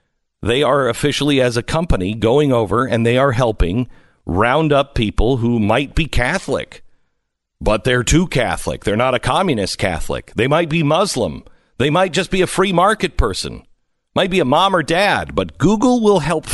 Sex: male